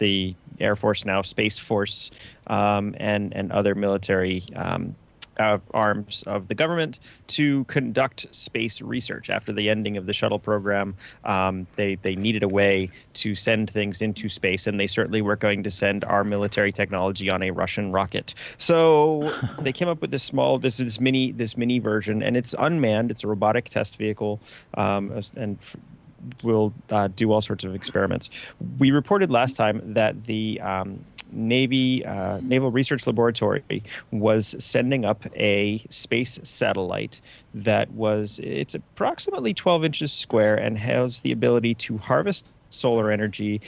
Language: English